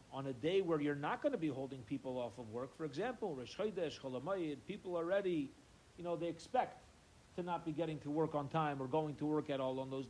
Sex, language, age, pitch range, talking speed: male, English, 40-59, 140-200 Hz, 240 wpm